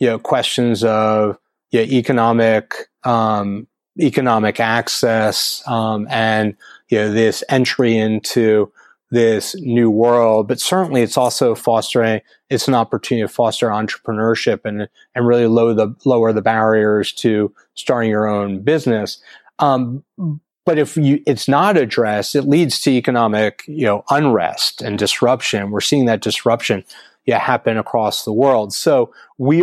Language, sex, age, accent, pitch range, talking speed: English, male, 30-49, American, 110-125 Hz, 140 wpm